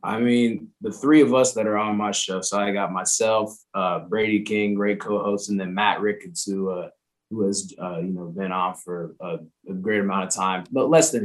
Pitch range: 100-120 Hz